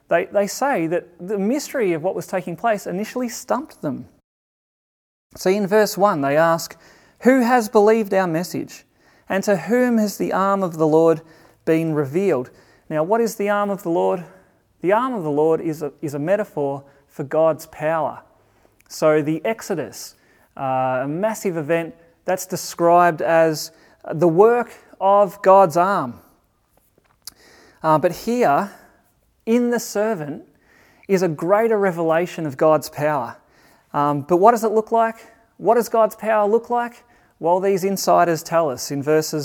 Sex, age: male, 30-49